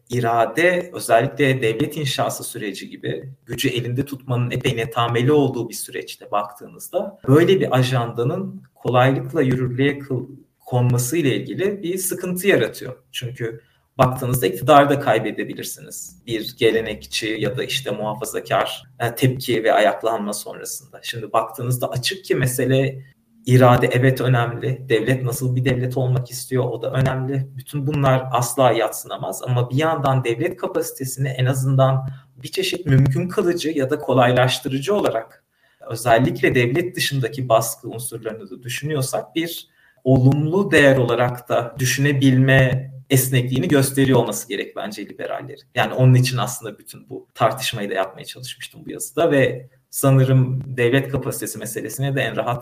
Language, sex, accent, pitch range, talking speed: Turkish, male, native, 120-140 Hz, 130 wpm